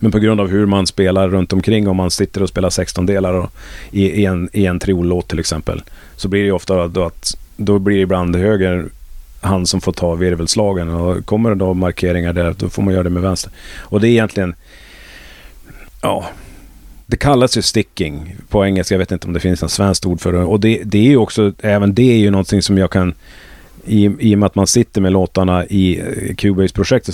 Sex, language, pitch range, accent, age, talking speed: male, Swedish, 90-100 Hz, native, 30-49, 225 wpm